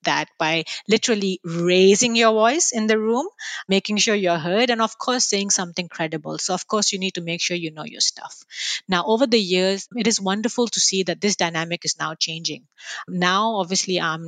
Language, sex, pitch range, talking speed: English, female, 175-215 Hz, 205 wpm